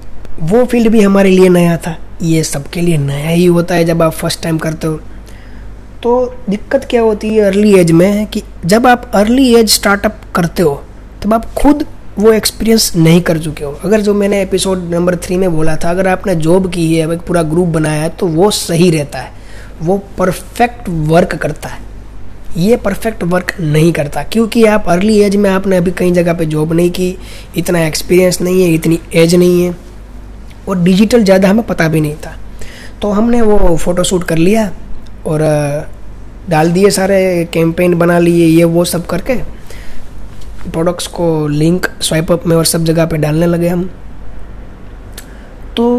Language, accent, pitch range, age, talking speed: Hindi, native, 160-200 Hz, 20-39, 180 wpm